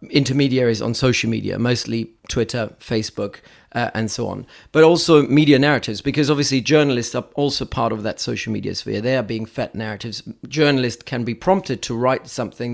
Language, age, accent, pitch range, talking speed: English, 40-59, British, 115-140 Hz, 180 wpm